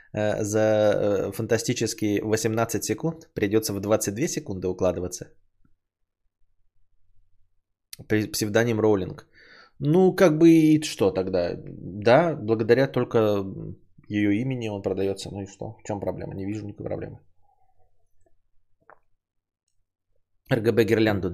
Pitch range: 100-135 Hz